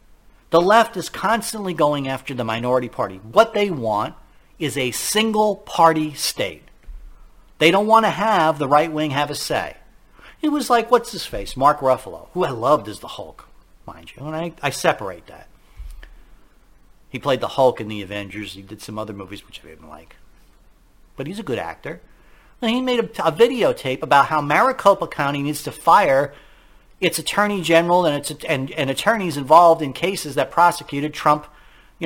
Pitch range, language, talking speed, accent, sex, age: 140-210 Hz, English, 180 wpm, American, male, 50-69